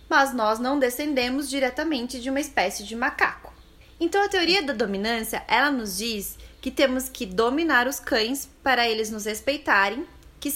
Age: 20-39